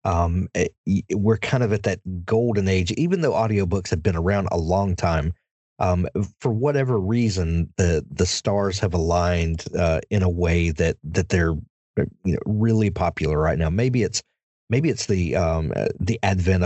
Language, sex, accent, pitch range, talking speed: English, male, American, 85-110 Hz, 170 wpm